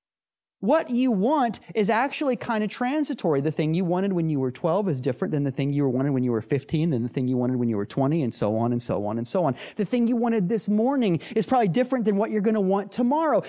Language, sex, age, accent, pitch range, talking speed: English, male, 30-49, American, 140-215 Hz, 270 wpm